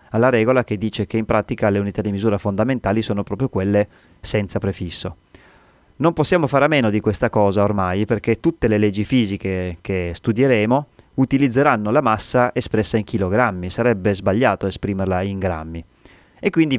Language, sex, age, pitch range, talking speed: Italian, male, 30-49, 100-120 Hz, 165 wpm